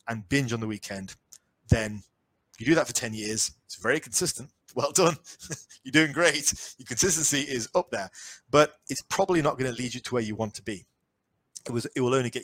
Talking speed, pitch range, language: 210 wpm, 110-140 Hz, English